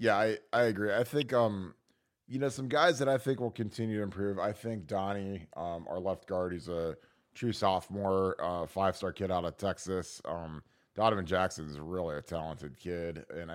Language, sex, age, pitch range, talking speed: English, male, 30-49, 90-105 Hz, 195 wpm